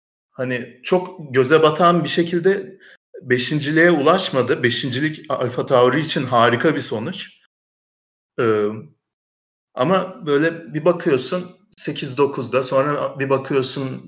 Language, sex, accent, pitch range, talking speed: Turkish, male, native, 110-145 Hz, 105 wpm